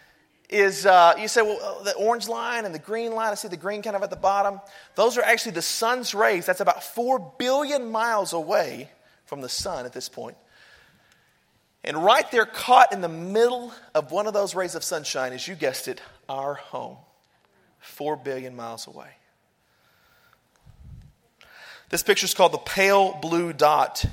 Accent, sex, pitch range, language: American, male, 140-200 Hz, English